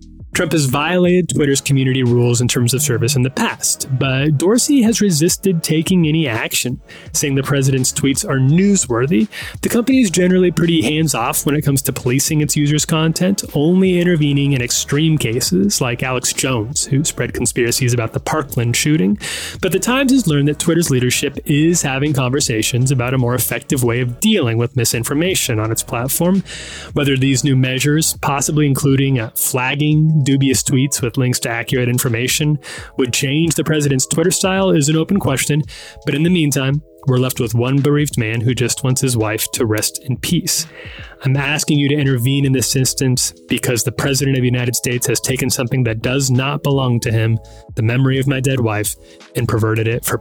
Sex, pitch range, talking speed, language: male, 125-155 Hz, 185 wpm, English